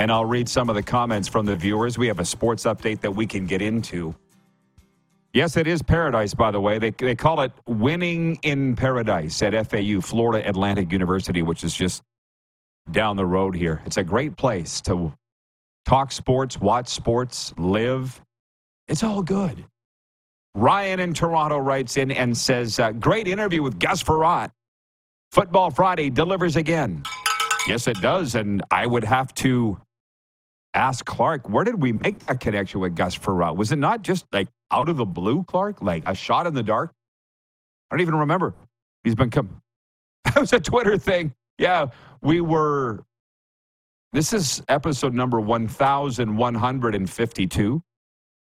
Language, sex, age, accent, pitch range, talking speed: English, male, 40-59, American, 100-135 Hz, 160 wpm